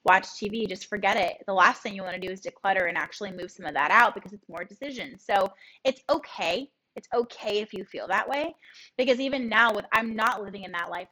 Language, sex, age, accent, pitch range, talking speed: English, female, 10-29, American, 190-245 Hz, 245 wpm